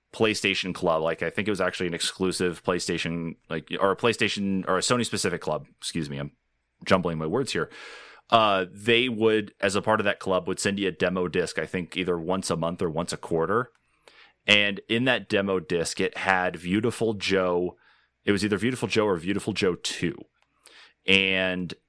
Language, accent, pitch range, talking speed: English, American, 90-105 Hz, 195 wpm